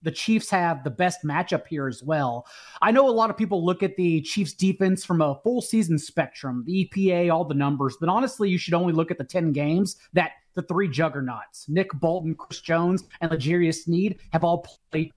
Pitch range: 160-205 Hz